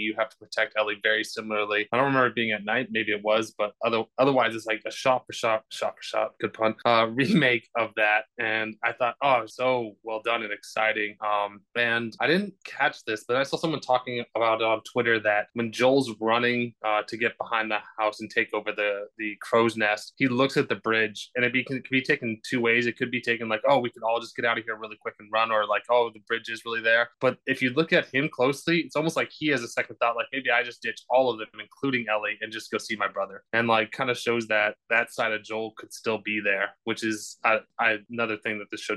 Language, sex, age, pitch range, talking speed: English, male, 20-39, 110-125 Hz, 260 wpm